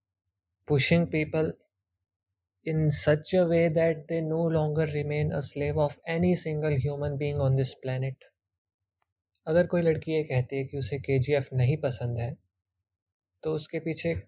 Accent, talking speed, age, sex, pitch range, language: native, 160 wpm, 20-39, male, 120-145 Hz, Hindi